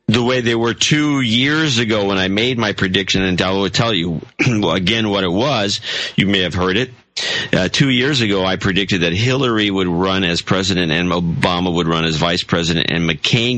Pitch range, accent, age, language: 85-120 Hz, American, 50-69, English